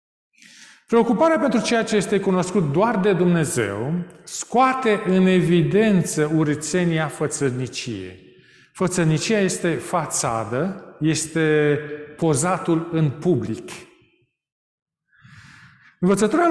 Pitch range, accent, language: 150-205 Hz, native, Romanian